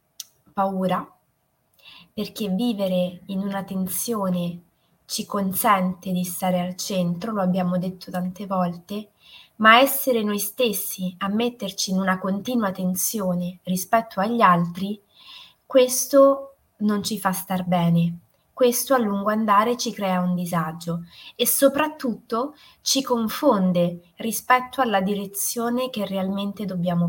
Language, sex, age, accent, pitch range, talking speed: Italian, female, 20-39, native, 180-225 Hz, 120 wpm